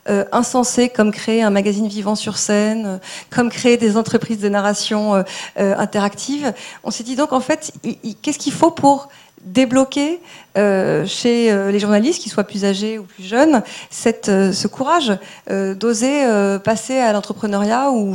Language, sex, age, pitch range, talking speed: French, female, 40-59, 200-250 Hz, 160 wpm